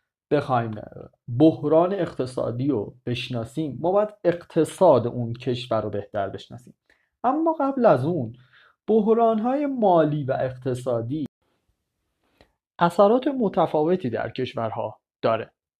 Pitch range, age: 125-195 Hz, 30-49